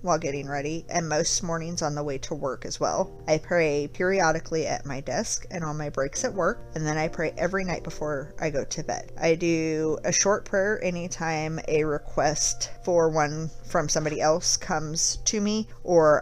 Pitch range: 145-180 Hz